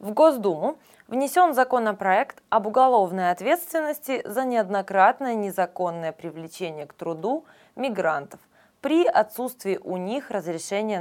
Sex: female